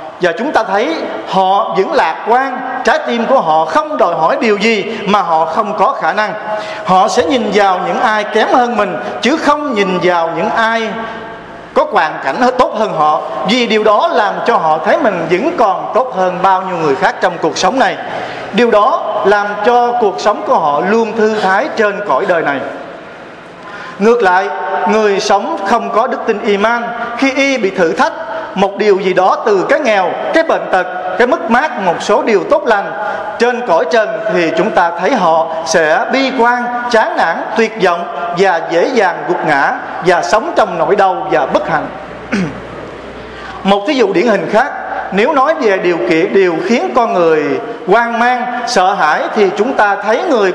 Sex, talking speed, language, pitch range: male, 195 wpm, Vietnamese, 190-240 Hz